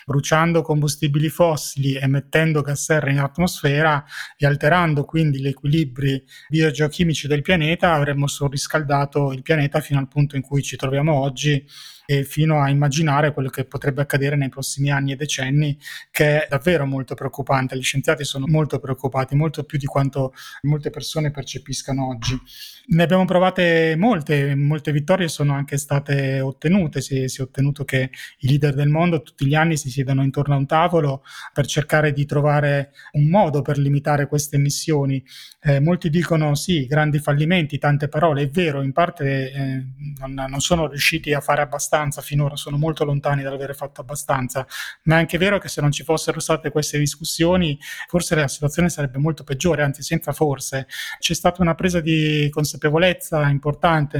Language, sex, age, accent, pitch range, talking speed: Italian, male, 20-39, native, 140-160 Hz, 170 wpm